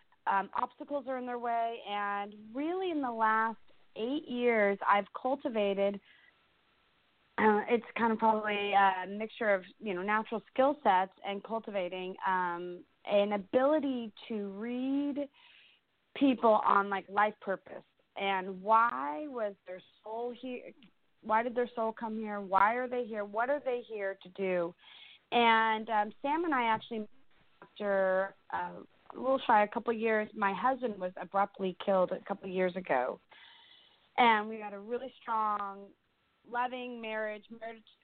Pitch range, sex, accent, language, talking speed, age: 195-245 Hz, female, American, English, 155 wpm, 30-49